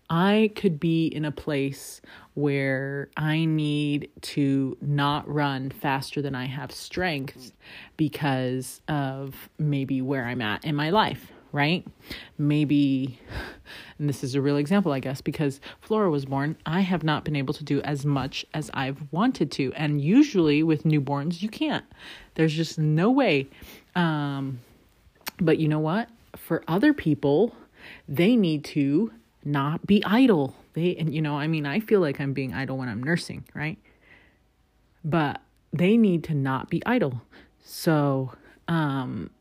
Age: 30-49